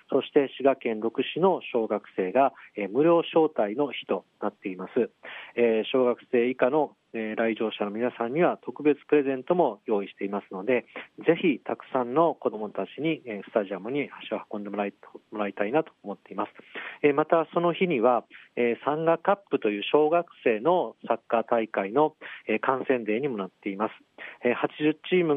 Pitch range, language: 110-150 Hz, Japanese